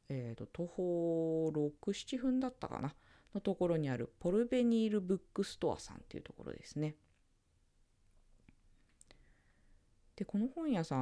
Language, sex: Japanese, female